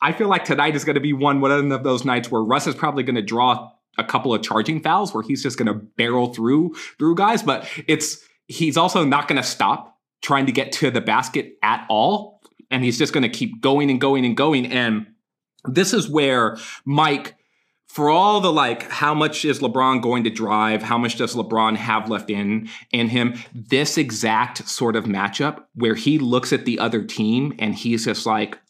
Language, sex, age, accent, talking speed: English, male, 30-49, American, 210 wpm